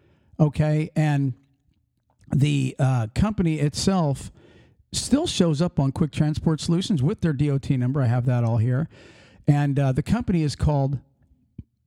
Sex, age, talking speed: male, 50-69, 140 wpm